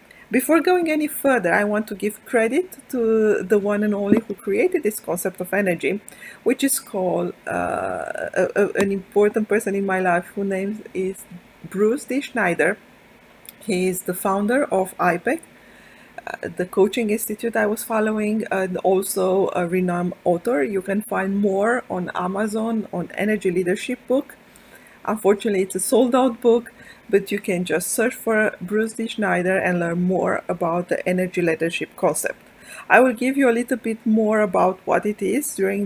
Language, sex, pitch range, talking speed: English, female, 190-245 Hz, 165 wpm